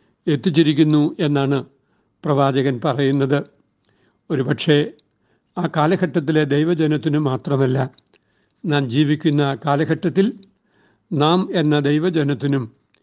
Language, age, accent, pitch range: Malayalam, 60-79, native, 145-170 Hz